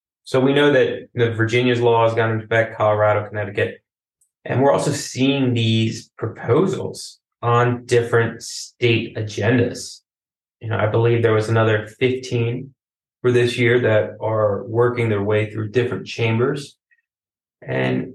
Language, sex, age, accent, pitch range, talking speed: English, male, 20-39, American, 110-125 Hz, 140 wpm